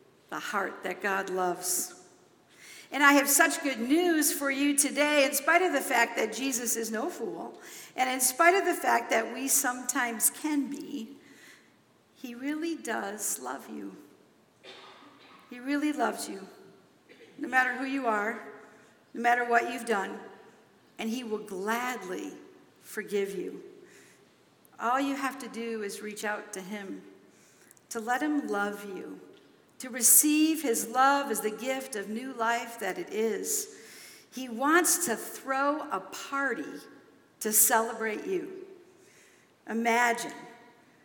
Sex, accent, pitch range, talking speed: female, American, 225-295 Hz, 145 wpm